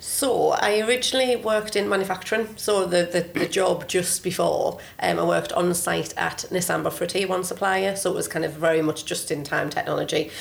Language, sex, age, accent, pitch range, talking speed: English, female, 30-49, British, 160-185 Hz, 200 wpm